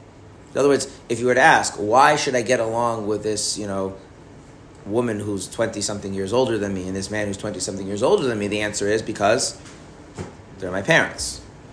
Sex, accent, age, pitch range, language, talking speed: male, American, 30-49, 105-125 Hz, English, 205 wpm